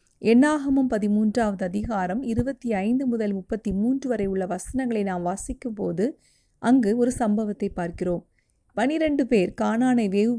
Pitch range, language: 195-240 Hz, Tamil